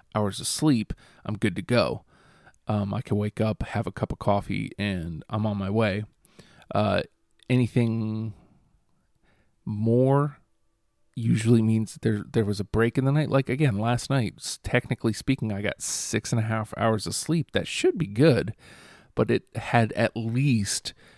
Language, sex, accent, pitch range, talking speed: English, male, American, 100-120 Hz, 165 wpm